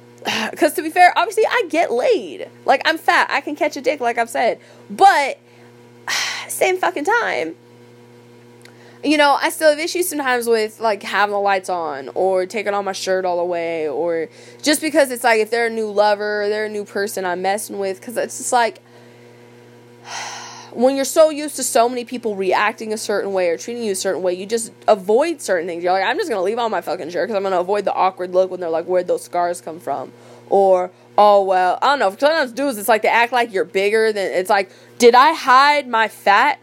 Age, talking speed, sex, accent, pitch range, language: 20-39, 225 wpm, female, American, 180-260 Hz, English